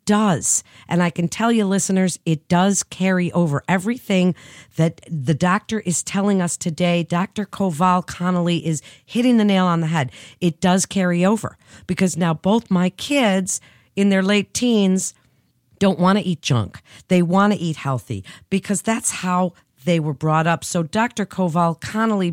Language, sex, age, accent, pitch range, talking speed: English, female, 50-69, American, 160-205 Hz, 170 wpm